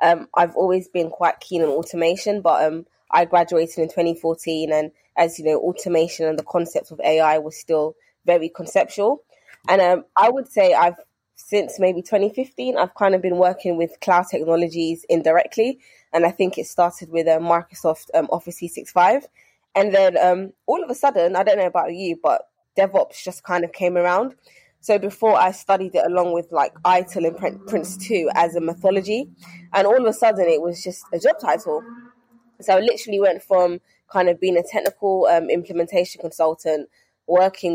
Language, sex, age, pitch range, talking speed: English, female, 20-39, 165-195 Hz, 185 wpm